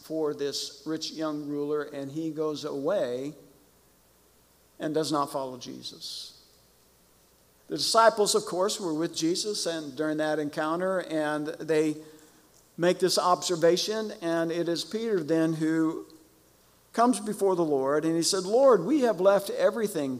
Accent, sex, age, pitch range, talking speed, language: American, male, 50-69, 140-175 Hz, 145 wpm, English